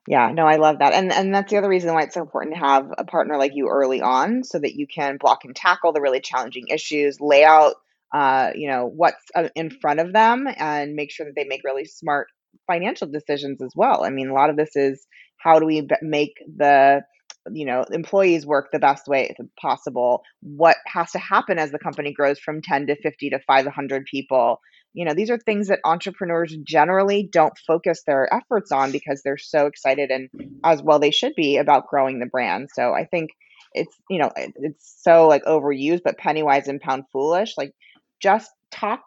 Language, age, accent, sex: English, 20-39, American, female